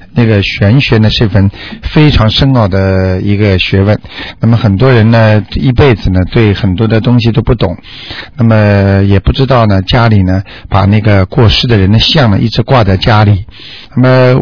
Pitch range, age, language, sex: 100-130 Hz, 50-69, Chinese, male